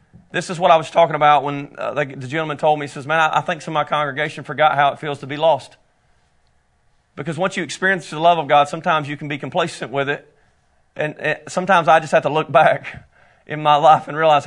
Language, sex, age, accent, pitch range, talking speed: English, male, 40-59, American, 145-190 Hz, 245 wpm